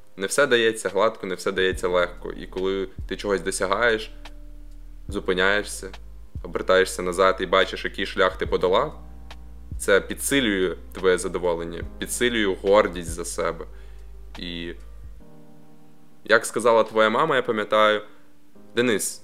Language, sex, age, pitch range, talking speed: Ukrainian, male, 20-39, 90-115 Hz, 120 wpm